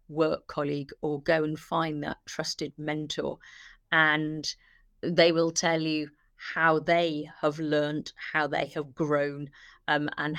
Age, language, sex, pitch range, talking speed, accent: 50-69, English, female, 150-170 Hz, 140 wpm, British